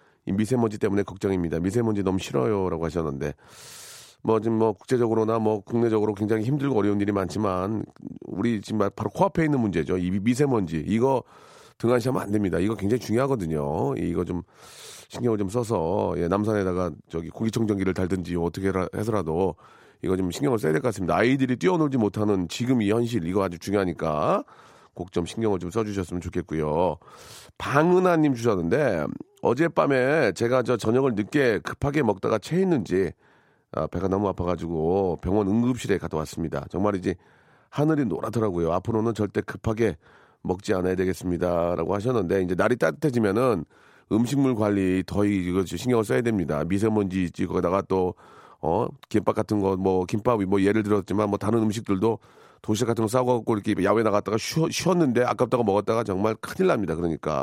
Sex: male